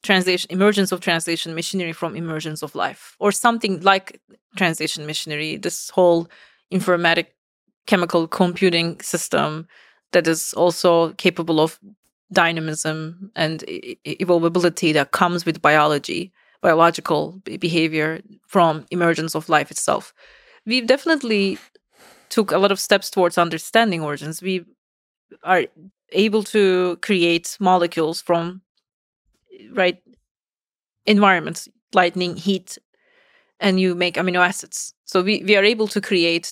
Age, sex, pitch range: 30-49, female, 170-200 Hz